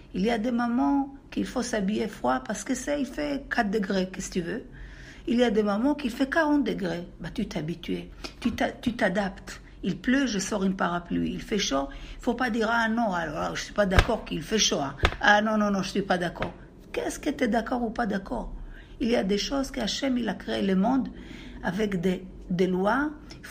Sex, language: female, French